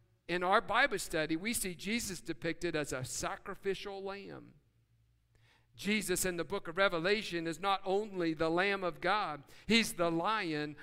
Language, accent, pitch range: English, American, 180-270 Hz